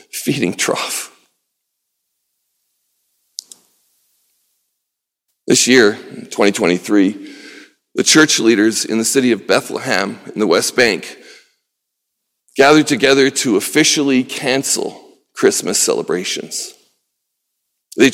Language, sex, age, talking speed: English, male, 40-59, 85 wpm